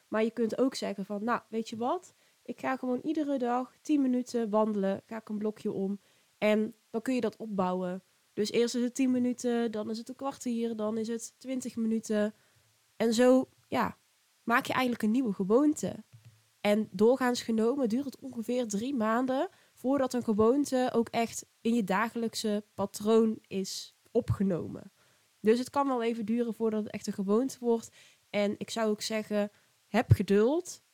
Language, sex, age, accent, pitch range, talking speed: Dutch, female, 20-39, Dutch, 205-245 Hz, 180 wpm